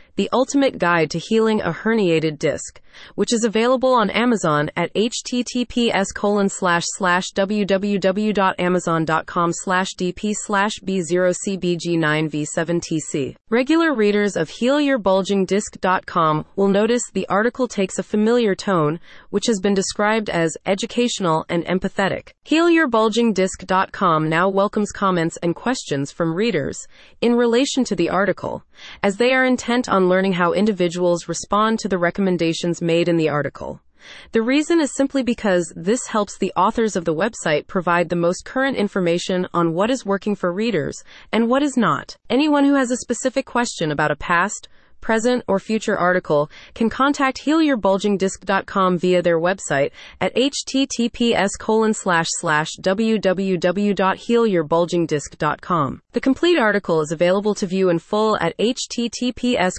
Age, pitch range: 30-49, 175-225 Hz